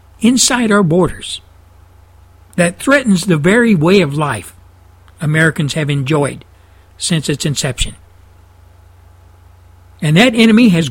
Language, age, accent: English, 60-79, American